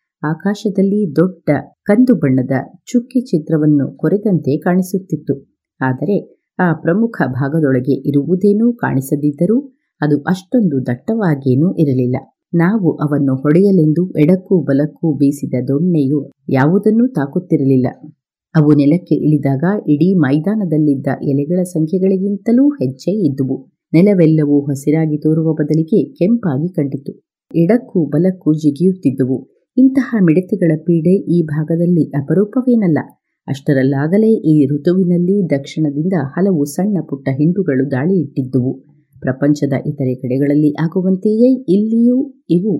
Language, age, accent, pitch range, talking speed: Kannada, 30-49, native, 140-185 Hz, 95 wpm